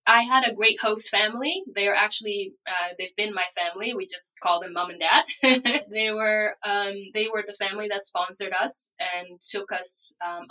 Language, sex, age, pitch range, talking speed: English, female, 10-29, 180-235 Hz, 200 wpm